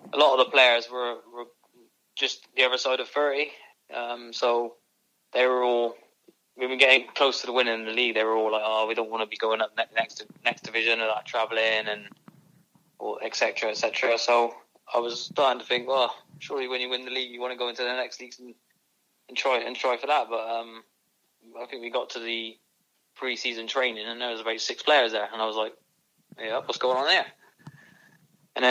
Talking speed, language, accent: 230 wpm, English, British